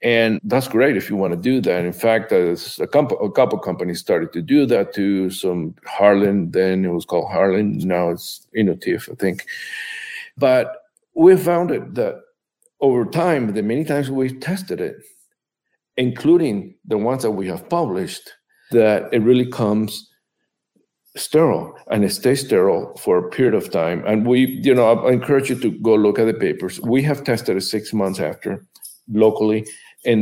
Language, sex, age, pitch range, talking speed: English, male, 50-69, 100-130 Hz, 180 wpm